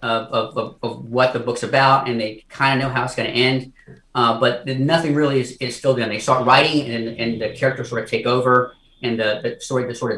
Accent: American